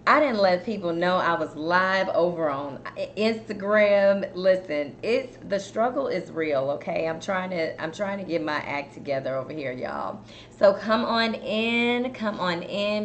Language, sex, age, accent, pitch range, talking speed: English, female, 20-39, American, 150-195 Hz, 175 wpm